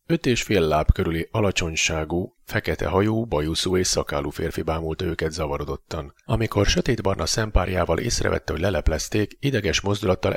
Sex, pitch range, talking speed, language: male, 80-105 Hz, 135 wpm, Hungarian